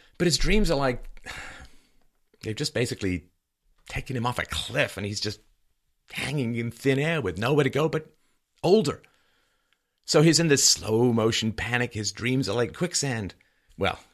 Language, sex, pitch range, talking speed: English, male, 90-135 Hz, 165 wpm